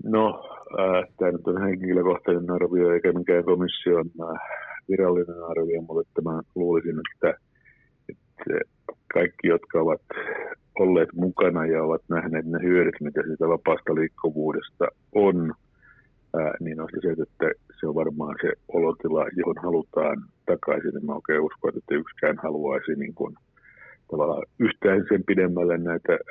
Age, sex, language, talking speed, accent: 50-69, male, Finnish, 135 wpm, native